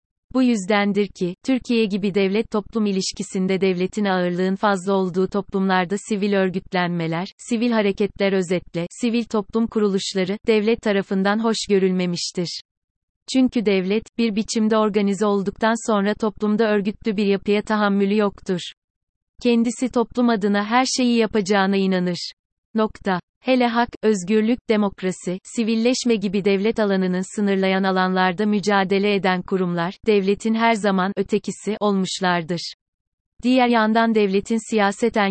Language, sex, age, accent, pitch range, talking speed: Turkish, female, 30-49, native, 185-215 Hz, 115 wpm